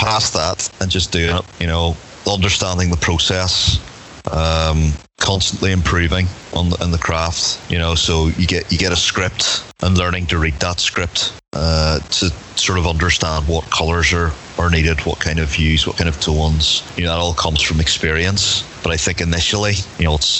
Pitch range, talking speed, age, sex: 85-100 Hz, 195 wpm, 30-49, male